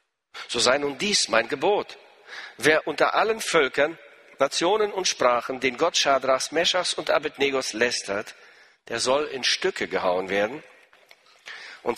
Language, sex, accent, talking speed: German, male, German, 135 wpm